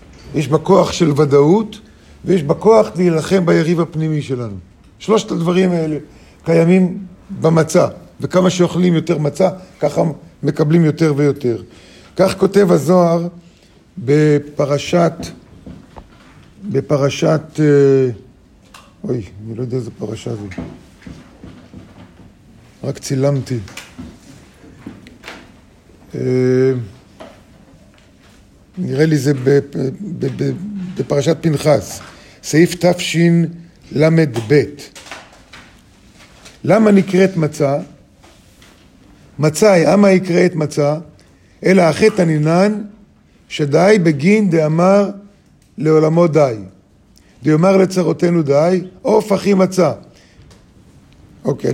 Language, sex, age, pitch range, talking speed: Hebrew, male, 50-69, 120-180 Hz, 85 wpm